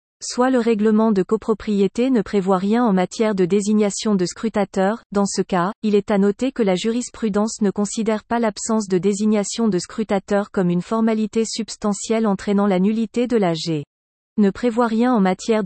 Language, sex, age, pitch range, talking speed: French, female, 40-59, 195-225 Hz, 180 wpm